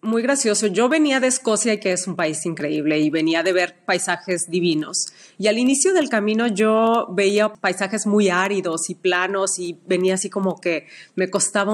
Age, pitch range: 30-49, 175-220 Hz